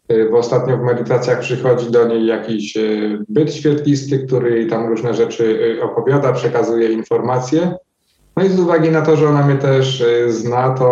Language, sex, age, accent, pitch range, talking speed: Polish, male, 20-39, native, 120-140 Hz, 160 wpm